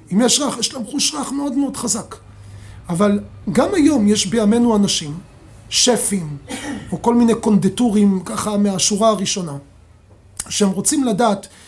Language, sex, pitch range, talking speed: Hebrew, male, 200-265 Hz, 140 wpm